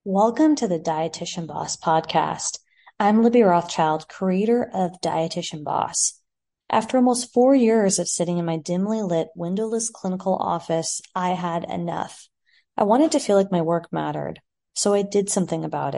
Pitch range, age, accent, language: 170-220 Hz, 20-39, American, English